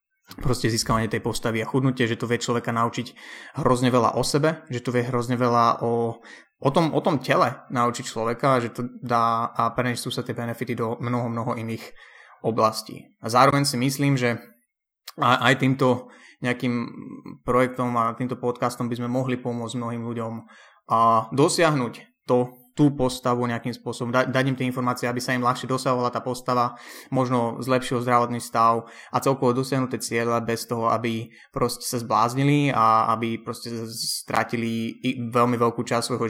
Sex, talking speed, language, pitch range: male, 165 wpm, Slovak, 115-130 Hz